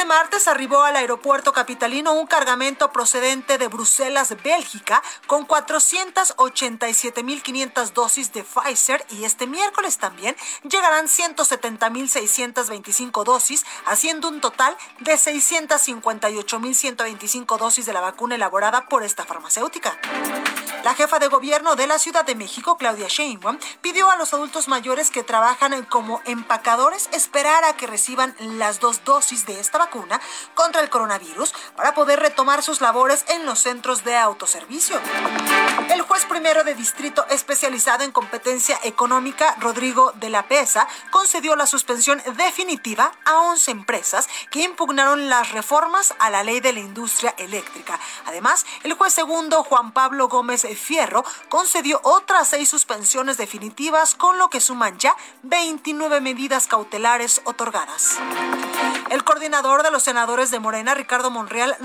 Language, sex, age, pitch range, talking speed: Spanish, female, 40-59, 240-310 Hz, 140 wpm